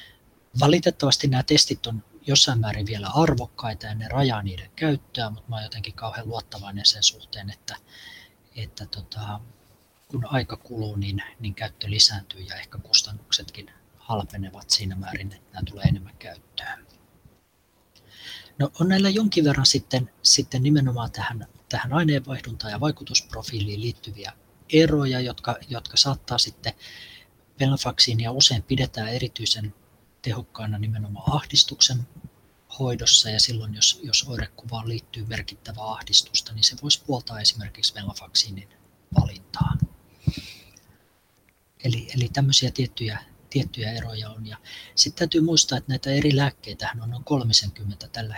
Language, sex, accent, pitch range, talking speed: Finnish, male, native, 105-130 Hz, 125 wpm